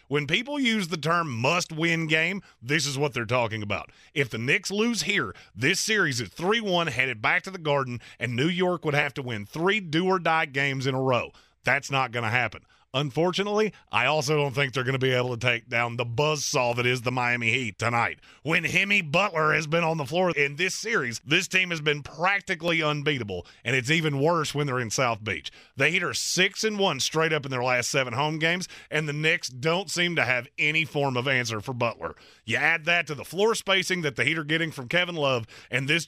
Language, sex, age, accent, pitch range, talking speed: English, male, 30-49, American, 130-170 Hz, 225 wpm